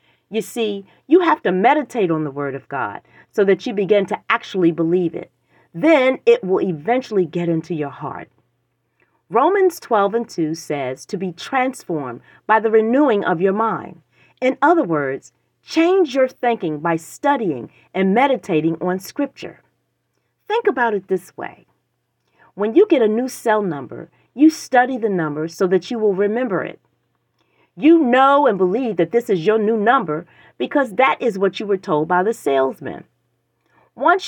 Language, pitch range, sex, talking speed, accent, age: English, 165-250 Hz, female, 170 wpm, American, 40-59